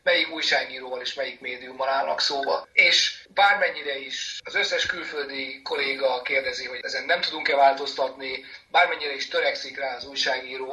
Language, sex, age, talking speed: Hungarian, male, 30-49, 145 wpm